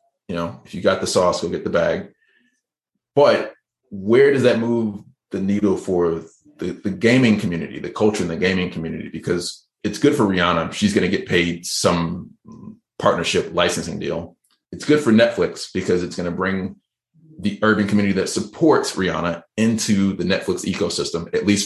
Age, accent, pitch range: 30-49, American, 95-115 Hz